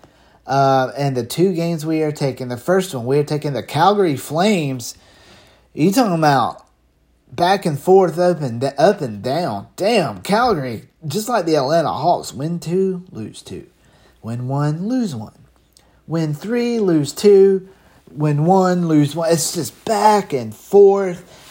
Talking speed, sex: 155 wpm, male